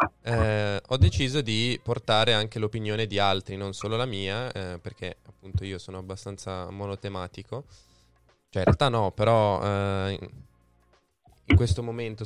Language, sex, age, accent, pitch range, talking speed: Italian, male, 20-39, native, 100-115 Hz, 140 wpm